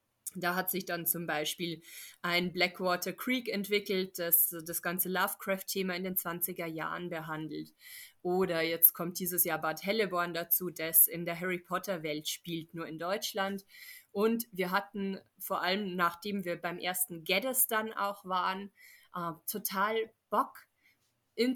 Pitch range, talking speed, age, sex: 175-210 Hz, 140 wpm, 20-39, female